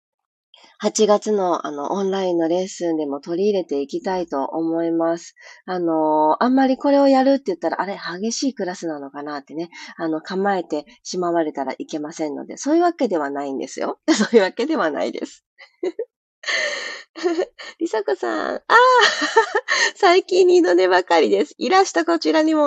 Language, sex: Japanese, female